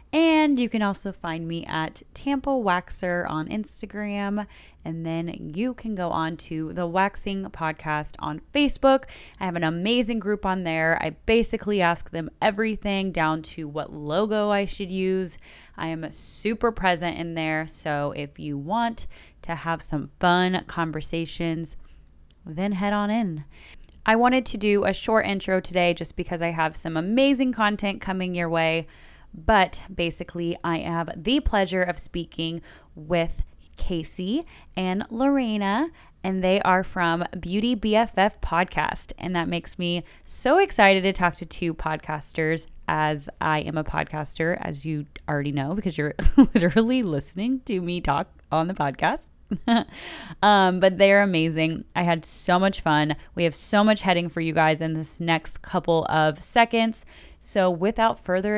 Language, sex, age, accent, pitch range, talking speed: English, female, 10-29, American, 160-205 Hz, 160 wpm